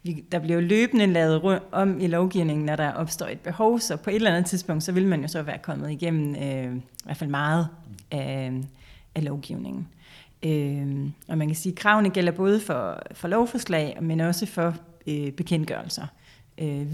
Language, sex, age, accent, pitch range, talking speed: Danish, female, 30-49, native, 150-180 Hz, 190 wpm